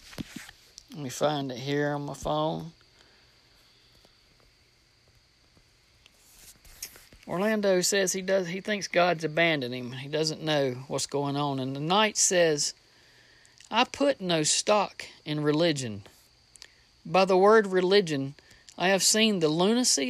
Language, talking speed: English, 125 wpm